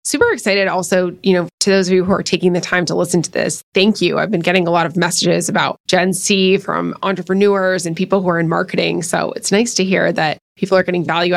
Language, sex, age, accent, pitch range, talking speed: English, female, 20-39, American, 175-195 Hz, 255 wpm